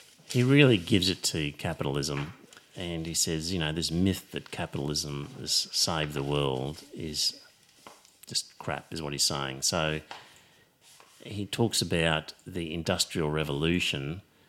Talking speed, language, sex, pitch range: 135 wpm, English, male, 80-100 Hz